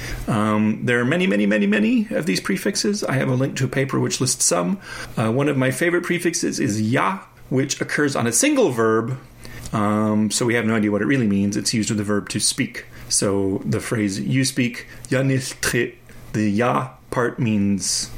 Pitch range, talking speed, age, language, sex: 105-145 Hz, 210 wpm, 30-49, English, male